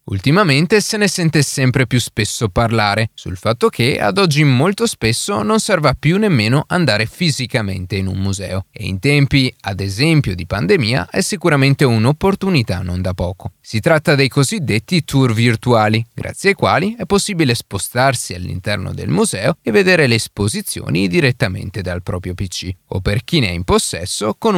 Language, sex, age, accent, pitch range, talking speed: Italian, male, 30-49, native, 105-160 Hz, 165 wpm